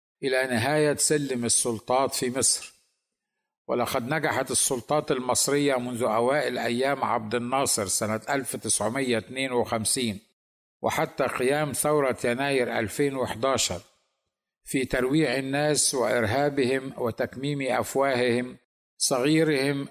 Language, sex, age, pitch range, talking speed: Arabic, male, 50-69, 120-140 Hz, 85 wpm